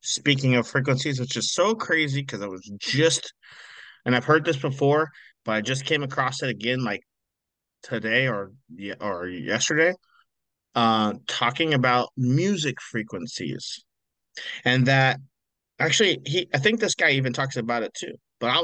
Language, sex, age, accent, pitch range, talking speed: English, male, 30-49, American, 125-155 Hz, 155 wpm